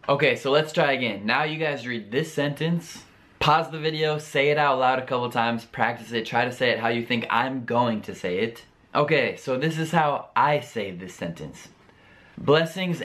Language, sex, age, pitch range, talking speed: Italian, male, 20-39, 110-140 Hz, 205 wpm